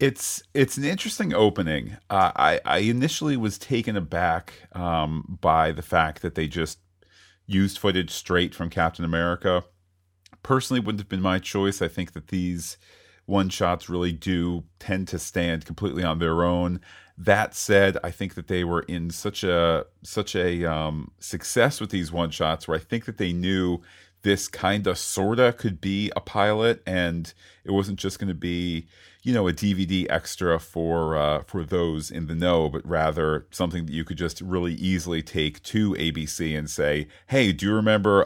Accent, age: American, 40-59